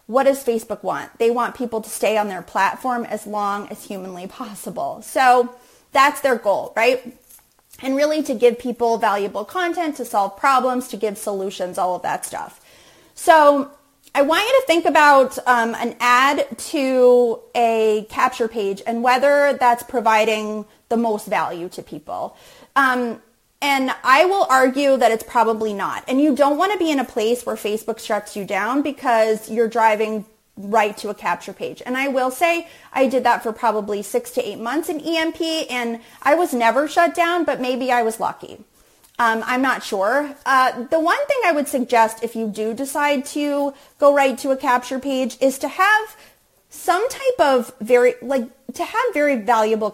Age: 30-49